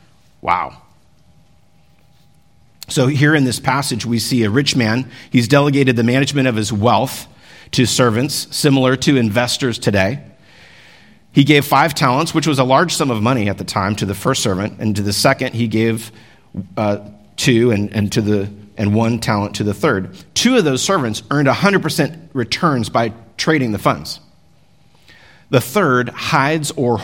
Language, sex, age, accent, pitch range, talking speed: English, male, 50-69, American, 105-135 Hz, 160 wpm